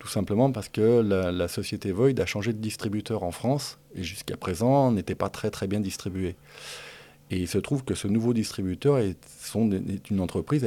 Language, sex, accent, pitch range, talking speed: French, male, French, 95-120 Hz, 200 wpm